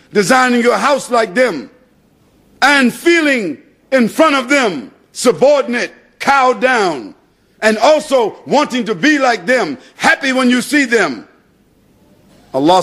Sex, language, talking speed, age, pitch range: male, English, 125 wpm, 50-69, 165-270 Hz